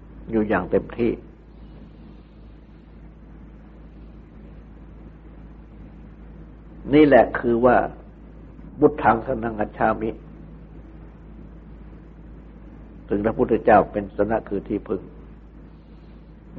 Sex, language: male, Thai